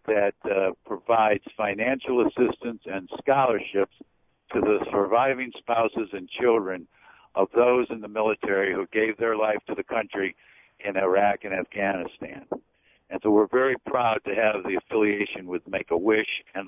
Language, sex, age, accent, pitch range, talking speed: English, male, 60-79, American, 105-130 Hz, 150 wpm